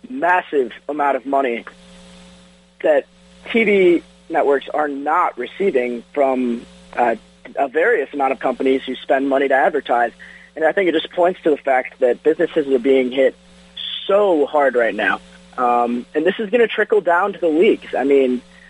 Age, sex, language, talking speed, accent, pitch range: 30-49, male, English, 170 wpm, American, 125-170 Hz